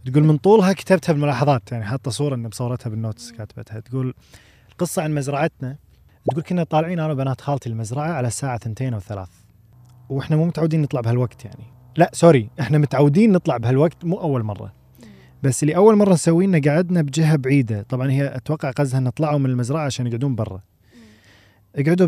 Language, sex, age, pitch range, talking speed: Arabic, male, 20-39, 110-150 Hz, 165 wpm